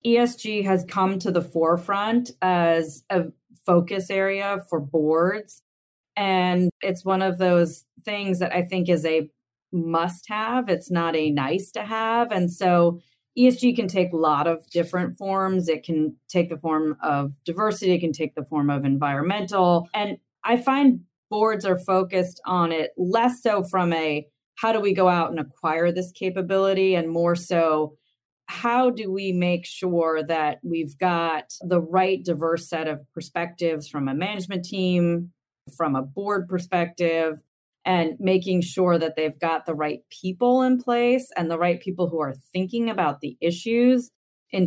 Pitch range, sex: 160-190 Hz, female